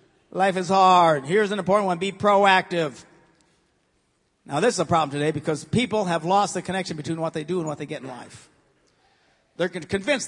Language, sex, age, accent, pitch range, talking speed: English, male, 50-69, American, 170-255 Hz, 195 wpm